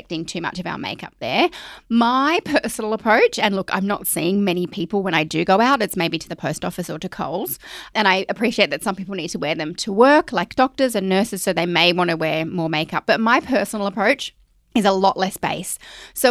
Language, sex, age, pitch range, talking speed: English, female, 20-39, 180-235 Hz, 235 wpm